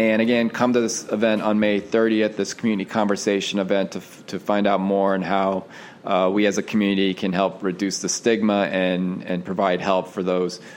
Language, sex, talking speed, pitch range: English, male, 200 wpm, 100-125 Hz